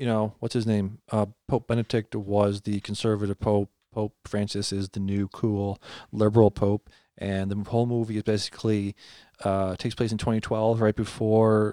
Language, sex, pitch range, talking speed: English, male, 100-110 Hz, 170 wpm